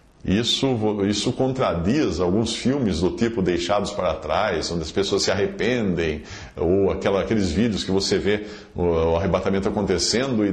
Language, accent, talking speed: English, Brazilian, 145 wpm